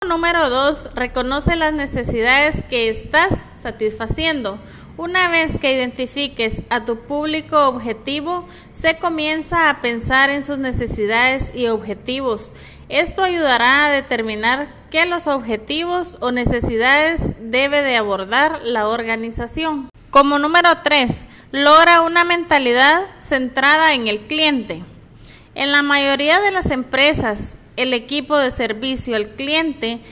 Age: 30-49